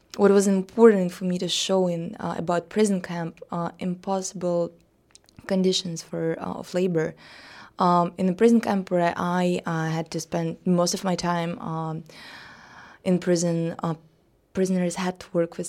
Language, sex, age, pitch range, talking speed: English, female, 20-39, 170-190 Hz, 165 wpm